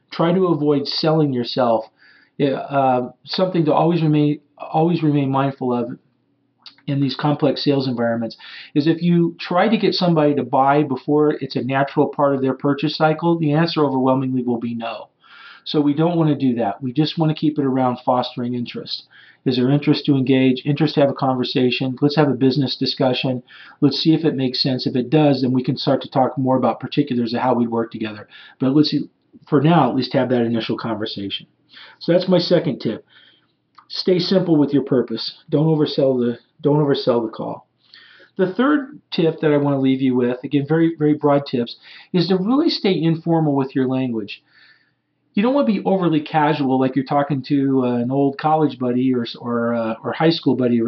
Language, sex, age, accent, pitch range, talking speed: English, male, 40-59, American, 130-160 Hz, 205 wpm